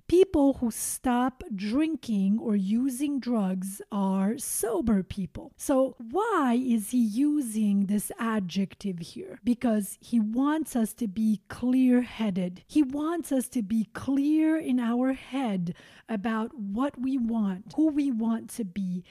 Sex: female